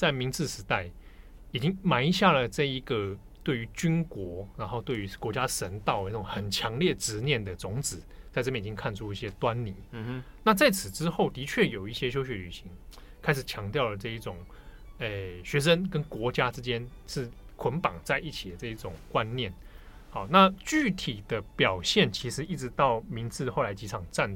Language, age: Chinese, 20-39